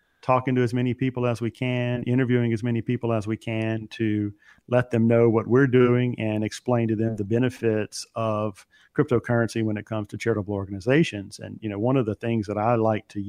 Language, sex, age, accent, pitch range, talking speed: English, male, 40-59, American, 110-130 Hz, 210 wpm